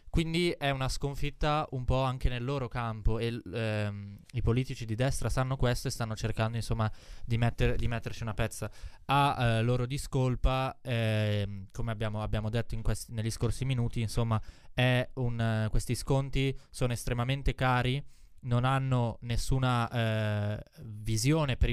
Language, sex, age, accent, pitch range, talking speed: Italian, male, 20-39, native, 110-125 Hz, 155 wpm